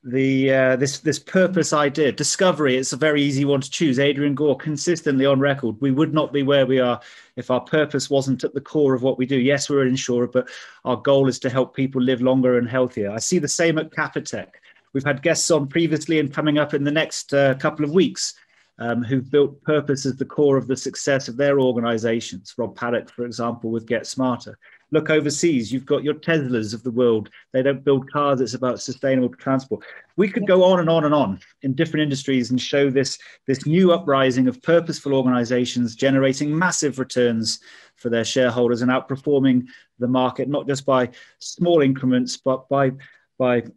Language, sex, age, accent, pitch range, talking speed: English, male, 30-49, British, 125-150 Hz, 205 wpm